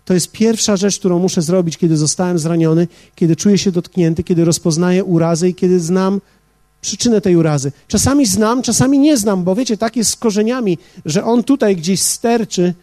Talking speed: 180 wpm